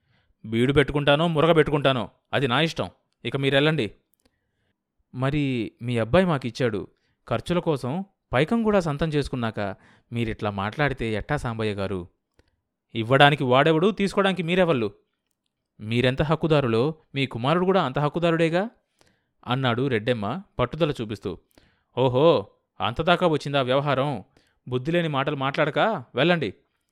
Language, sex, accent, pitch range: Telugu, male, native, 115-165 Hz